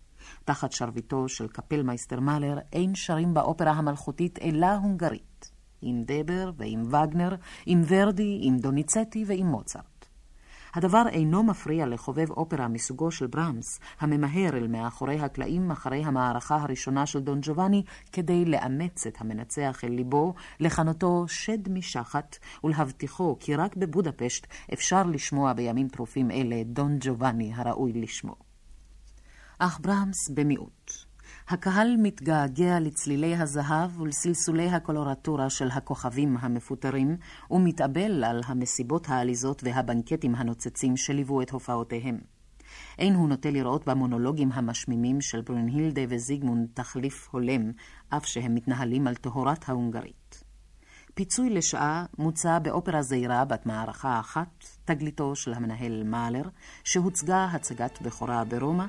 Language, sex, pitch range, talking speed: Hebrew, female, 125-165 Hz, 120 wpm